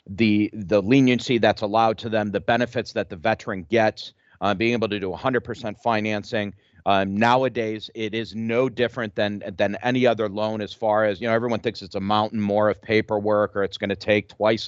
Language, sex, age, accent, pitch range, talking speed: English, male, 40-59, American, 105-120 Hz, 205 wpm